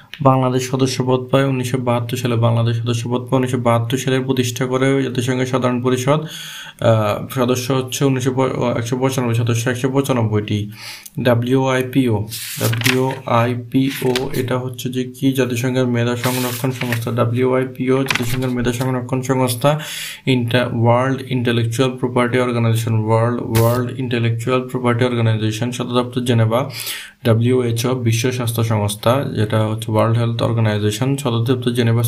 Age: 20-39